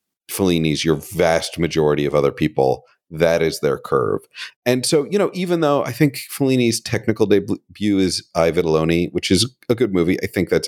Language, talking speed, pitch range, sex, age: English, 185 wpm, 85-120 Hz, male, 40-59